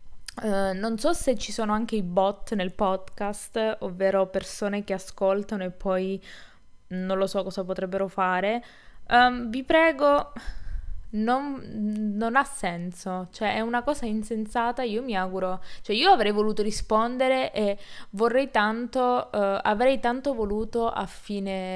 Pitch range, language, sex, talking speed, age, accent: 185-235 Hz, Italian, female, 145 wpm, 20-39, native